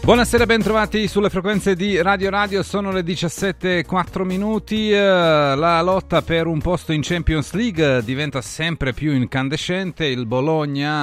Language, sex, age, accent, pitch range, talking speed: Italian, male, 40-59, native, 125-165 Hz, 140 wpm